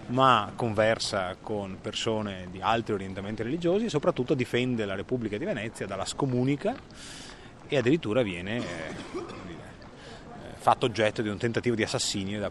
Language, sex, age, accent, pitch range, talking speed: Italian, male, 30-49, native, 100-135 Hz, 145 wpm